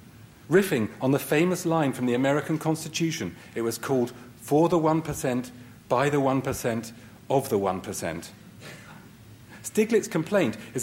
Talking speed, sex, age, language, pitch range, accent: 135 wpm, male, 40-59, English, 115-160 Hz, British